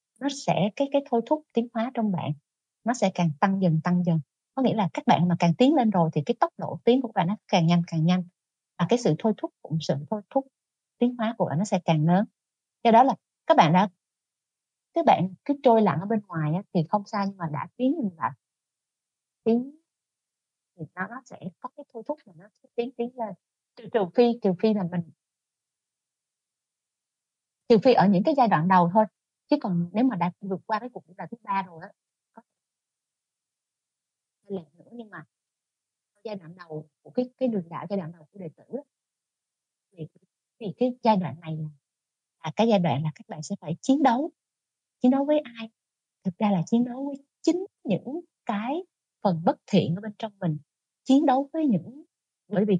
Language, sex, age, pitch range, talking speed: Vietnamese, female, 30-49, 175-245 Hz, 210 wpm